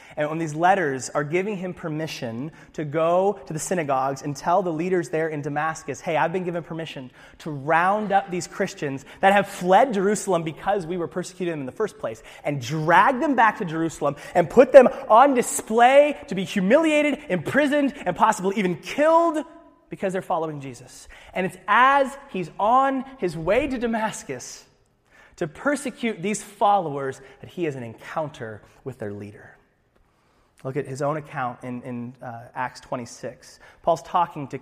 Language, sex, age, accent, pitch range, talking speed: English, male, 30-49, American, 135-195 Hz, 175 wpm